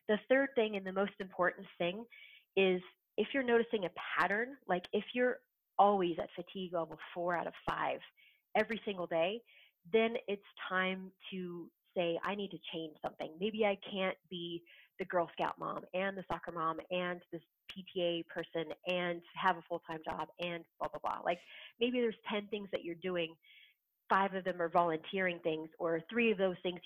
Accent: American